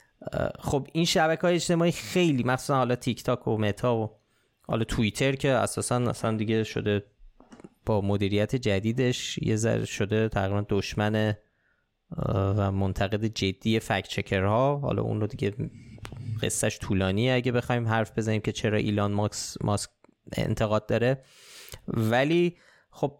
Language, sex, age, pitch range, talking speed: Persian, male, 20-39, 110-135 Hz, 135 wpm